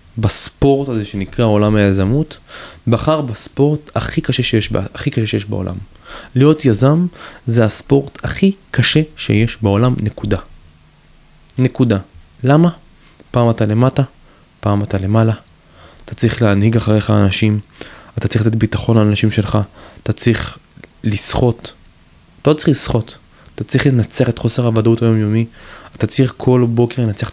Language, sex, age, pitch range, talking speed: Hebrew, male, 20-39, 105-130 Hz, 135 wpm